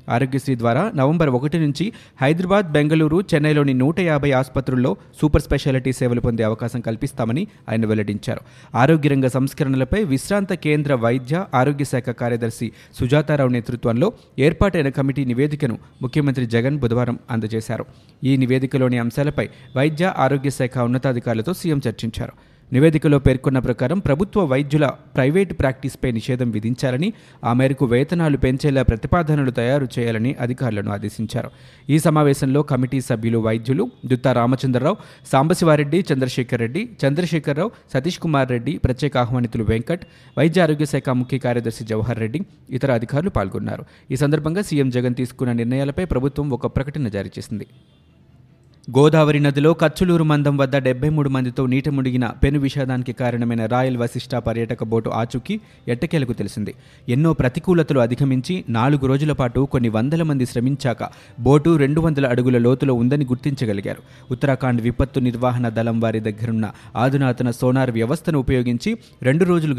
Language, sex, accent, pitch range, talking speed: Telugu, male, native, 120-145 Hz, 125 wpm